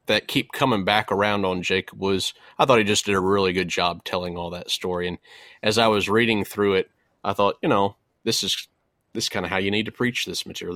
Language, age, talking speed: English, 30-49, 245 wpm